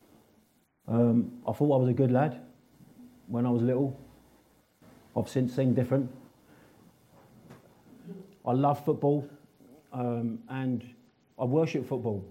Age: 40-59